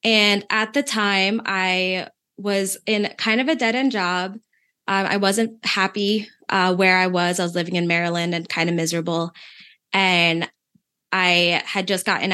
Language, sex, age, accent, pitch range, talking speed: English, female, 20-39, American, 175-205 Hz, 165 wpm